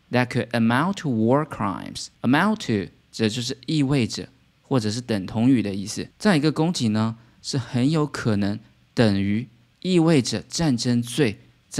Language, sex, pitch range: Chinese, male, 110-140 Hz